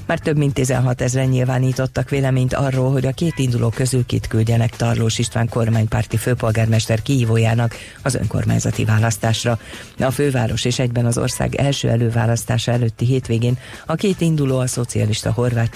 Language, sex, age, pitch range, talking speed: Hungarian, female, 40-59, 115-130 Hz, 150 wpm